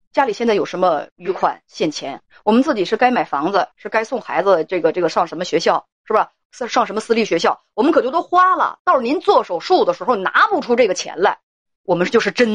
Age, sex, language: 30-49, female, Chinese